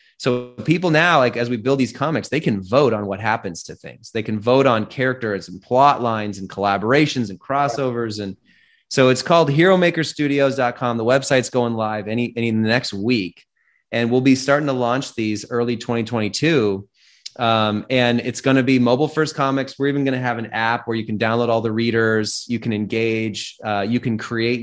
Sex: male